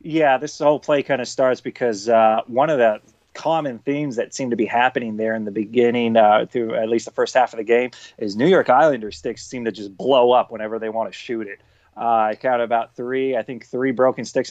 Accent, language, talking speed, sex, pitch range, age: American, English, 245 wpm, male, 115-135 Hz, 30-49